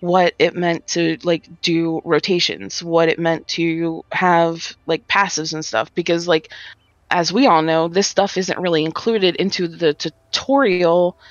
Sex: female